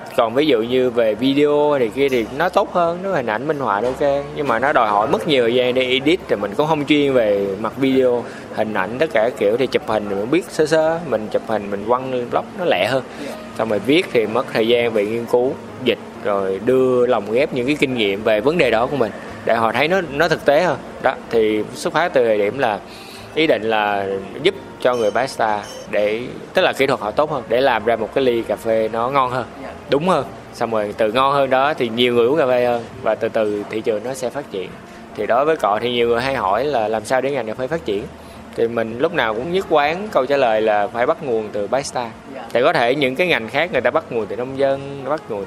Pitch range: 110-140 Hz